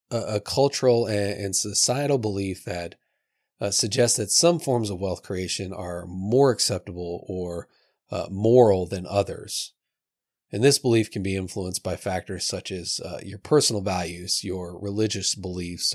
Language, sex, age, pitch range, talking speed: English, male, 30-49, 90-110 Hz, 145 wpm